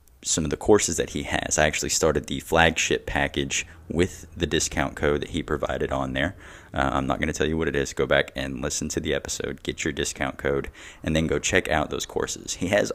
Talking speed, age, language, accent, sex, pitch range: 240 wpm, 20-39, English, American, male, 70-85 Hz